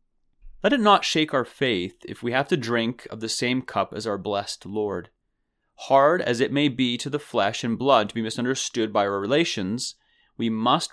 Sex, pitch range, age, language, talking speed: male, 110-145 Hz, 30-49, English, 205 wpm